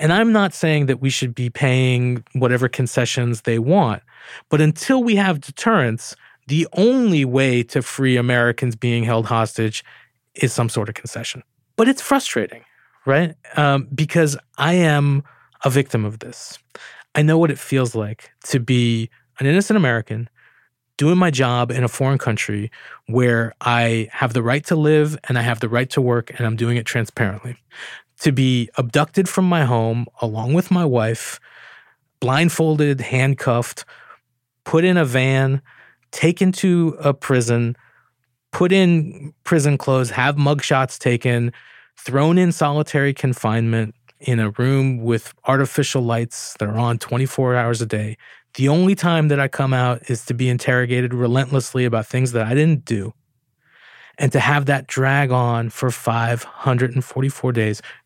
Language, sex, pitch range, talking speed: English, male, 120-150 Hz, 155 wpm